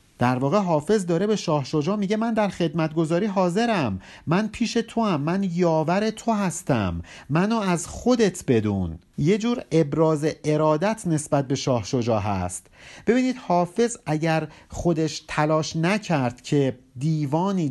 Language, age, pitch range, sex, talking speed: Persian, 50-69, 130-195 Hz, male, 130 wpm